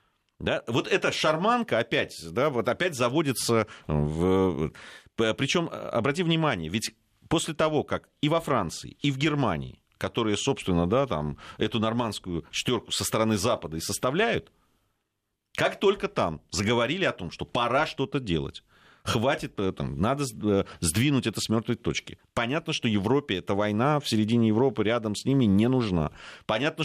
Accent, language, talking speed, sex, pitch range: native, Russian, 150 wpm, male, 95-140 Hz